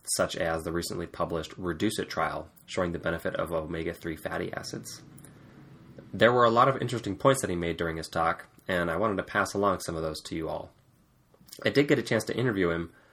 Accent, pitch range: American, 85-105 Hz